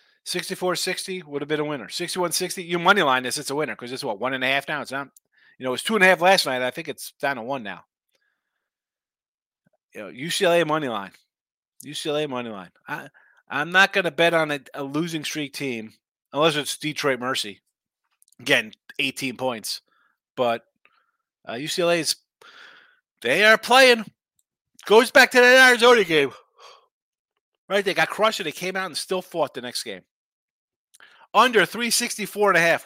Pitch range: 120-185 Hz